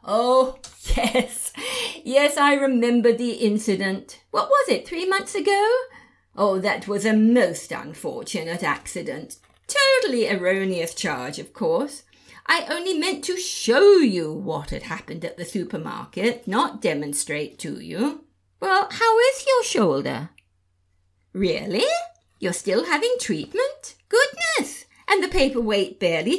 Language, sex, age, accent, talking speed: English, female, 50-69, British, 125 wpm